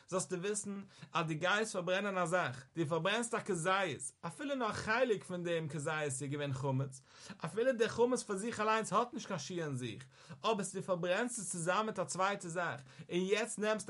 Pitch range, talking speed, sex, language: 140-195 Hz, 175 wpm, male, English